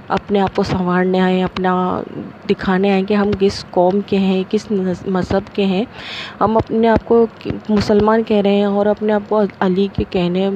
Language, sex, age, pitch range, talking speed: Urdu, female, 20-39, 180-205 Hz, 190 wpm